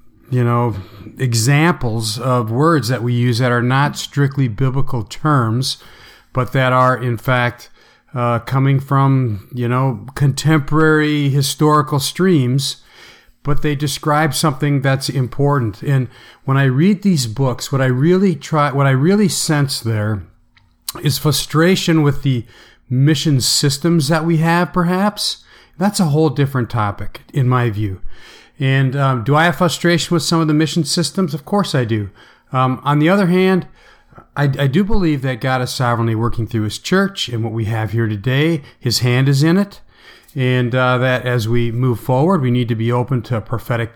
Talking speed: 170 wpm